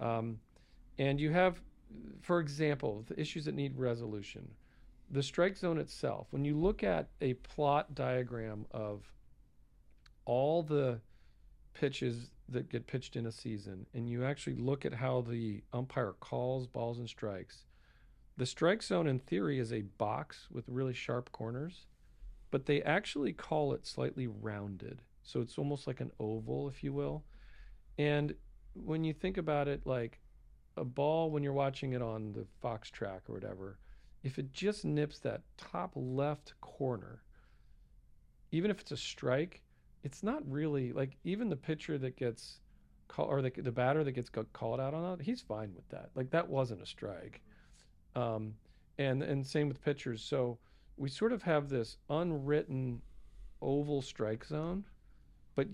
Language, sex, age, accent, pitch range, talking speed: English, male, 40-59, American, 115-145 Hz, 160 wpm